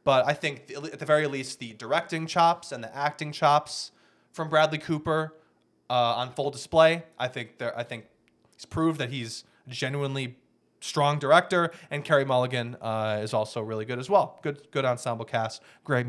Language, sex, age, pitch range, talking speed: English, male, 20-39, 120-155 Hz, 185 wpm